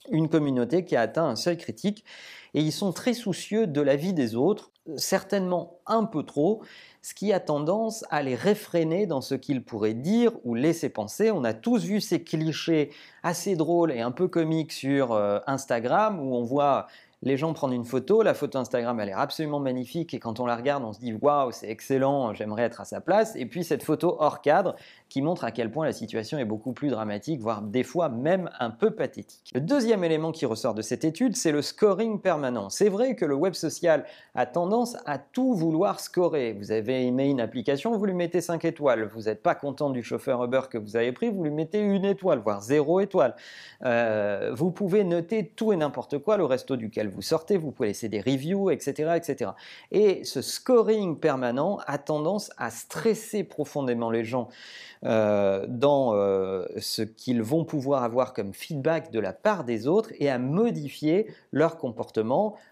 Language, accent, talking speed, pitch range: French, French, 205 wpm, 125-185 Hz